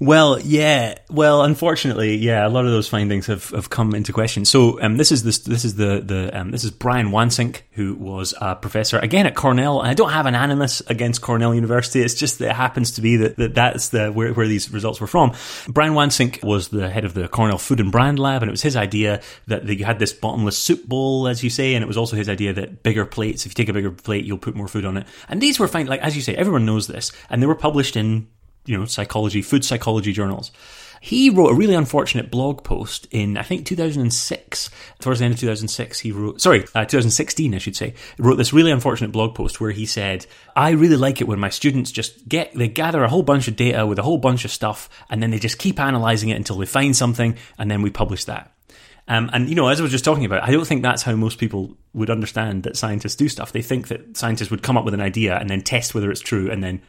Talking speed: 260 wpm